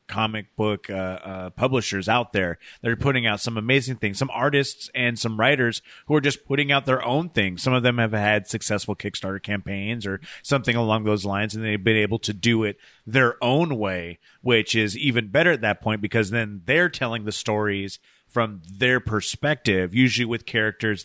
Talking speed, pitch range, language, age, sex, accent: 195 wpm, 105-125 Hz, English, 30-49, male, American